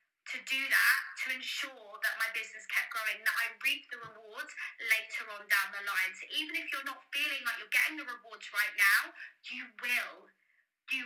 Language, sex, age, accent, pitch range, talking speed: English, female, 20-39, British, 225-295 Hz, 195 wpm